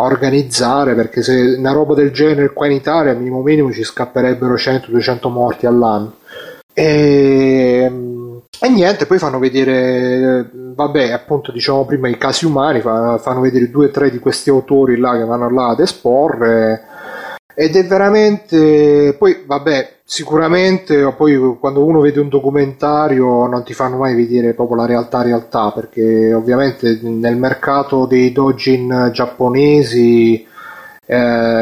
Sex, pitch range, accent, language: male, 120-140 Hz, native, Italian